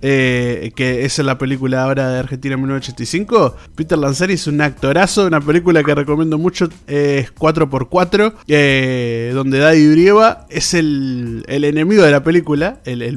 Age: 20-39